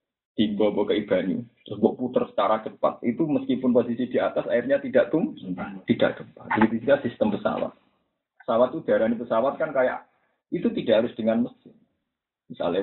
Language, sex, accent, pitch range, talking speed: Indonesian, male, native, 140-240 Hz, 165 wpm